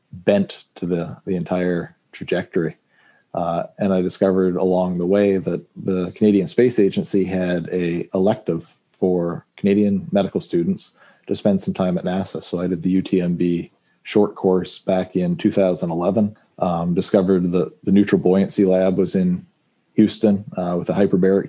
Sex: male